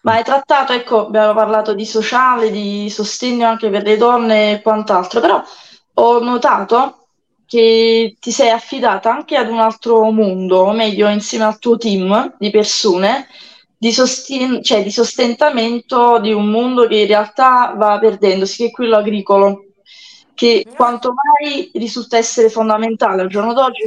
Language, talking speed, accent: Italian, 155 wpm, native